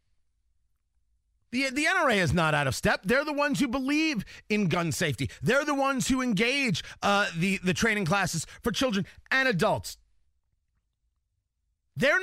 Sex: male